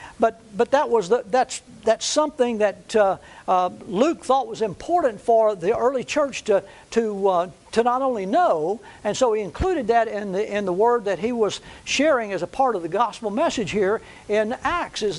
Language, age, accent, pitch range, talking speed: English, 60-79, American, 205-255 Hz, 200 wpm